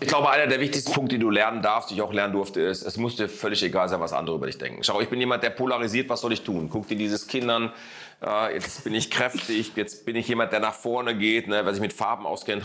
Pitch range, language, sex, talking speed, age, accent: 105-120 Hz, German, male, 285 wpm, 40-59, German